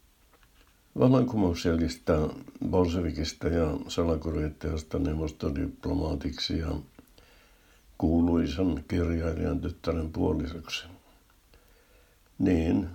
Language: Finnish